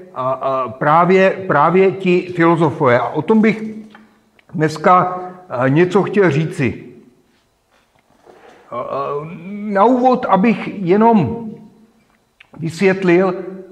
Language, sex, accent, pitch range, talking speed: Czech, male, native, 145-185 Hz, 80 wpm